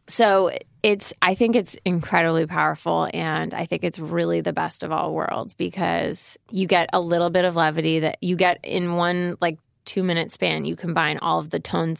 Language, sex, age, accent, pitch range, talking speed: English, female, 20-39, American, 145-175 Hz, 195 wpm